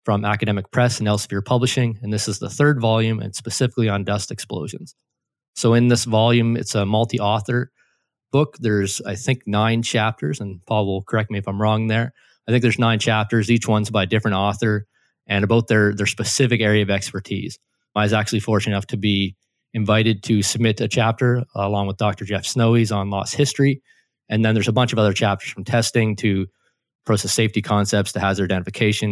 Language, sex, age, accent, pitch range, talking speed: English, male, 20-39, American, 100-120 Hz, 195 wpm